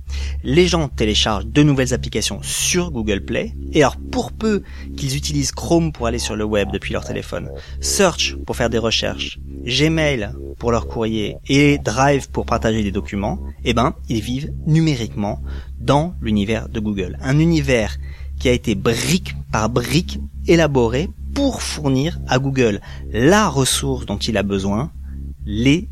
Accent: French